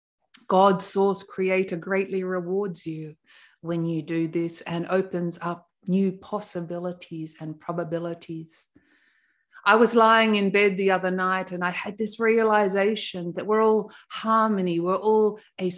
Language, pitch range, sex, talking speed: English, 170-205 Hz, female, 140 wpm